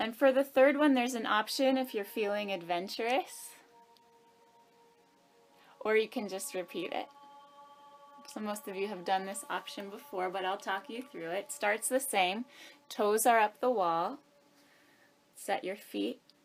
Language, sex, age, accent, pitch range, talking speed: English, female, 20-39, American, 195-255 Hz, 160 wpm